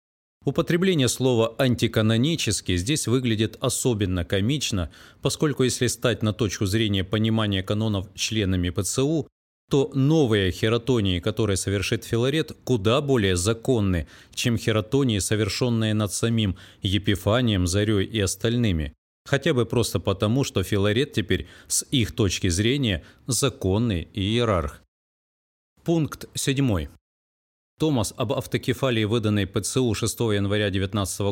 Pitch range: 100-125 Hz